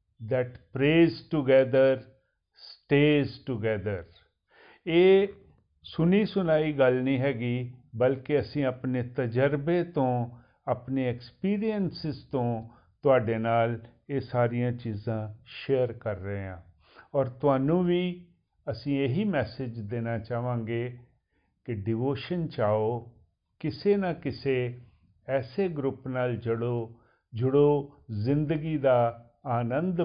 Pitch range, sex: 115-145 Hz, male